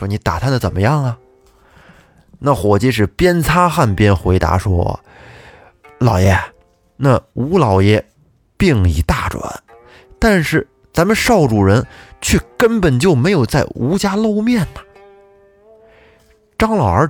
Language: Chinese